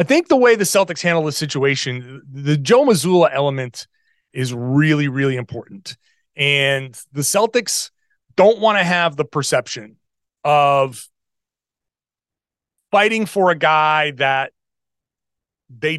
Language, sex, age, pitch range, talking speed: English, male, 30-49, 140-205 Hz, 125 wpm